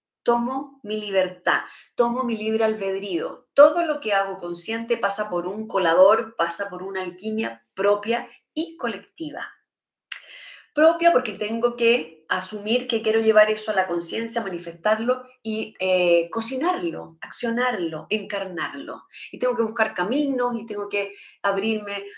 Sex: female